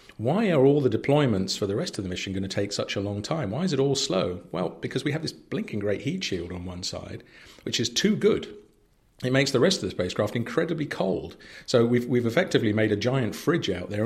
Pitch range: 95-120 Hz